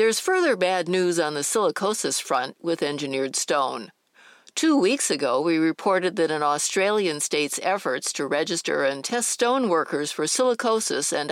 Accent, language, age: American, English, 60-79